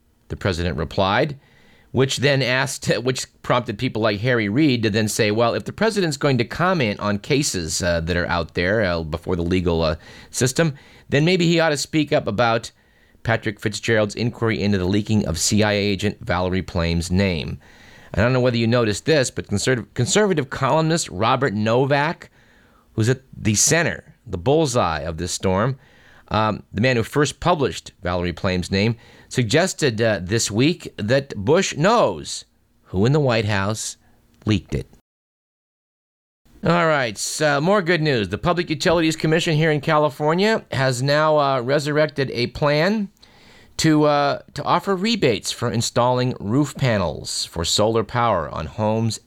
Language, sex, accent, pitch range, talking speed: English, male, American, 100-145 Hz, 160 wpm